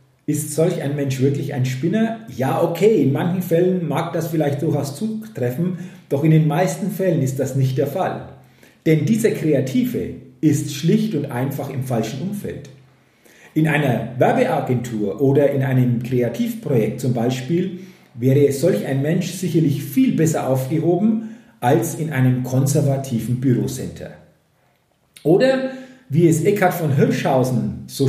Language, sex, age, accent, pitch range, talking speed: German, male, 40-59, German, 130-175 Hz, 140 wpm